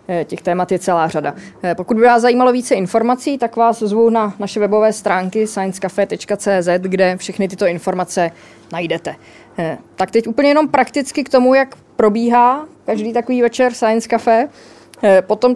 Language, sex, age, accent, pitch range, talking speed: Czech, female, 20-39, native, 190-240 Hz, 150 wpm